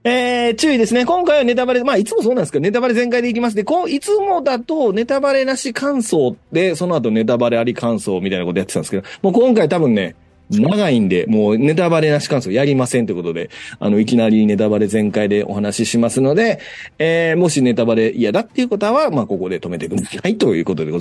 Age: 30-49